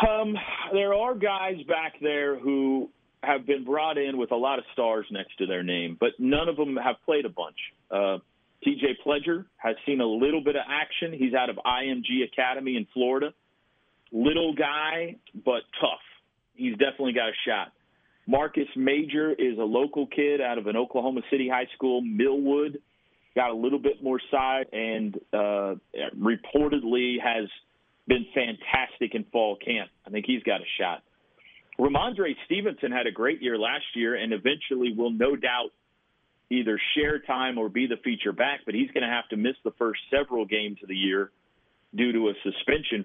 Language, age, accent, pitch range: English, 40-59, American, 115-145 Hz